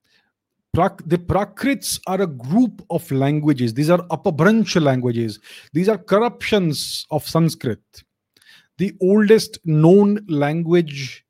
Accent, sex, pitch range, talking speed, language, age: Indian, male, 135-180 Hz, 110 wpm, English, 30-49